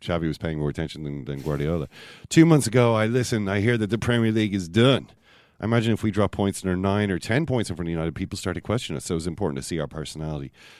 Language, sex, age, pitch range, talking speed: English, male, 40-59, 75-105 Hz, 280 wpm